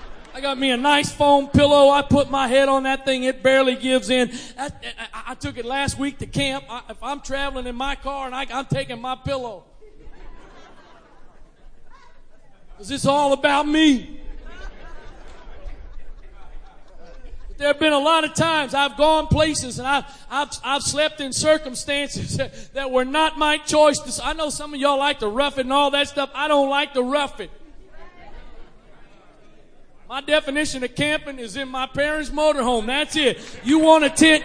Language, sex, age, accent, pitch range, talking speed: English, male, 40-59, American, 270-300 Hz, 170 wpm